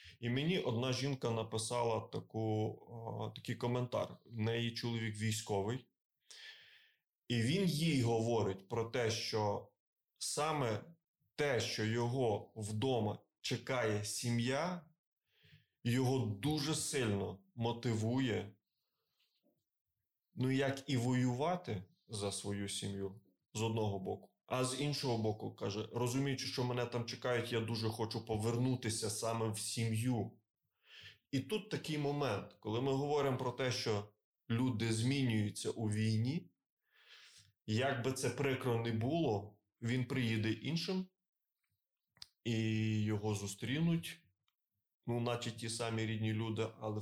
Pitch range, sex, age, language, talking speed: 110-130 Hz, male, 20-39, Ukrainian, 115 wpm